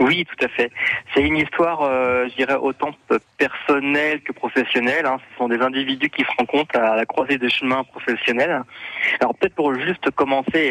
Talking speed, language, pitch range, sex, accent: 185 wpm, French, 115-145 Hz, male, French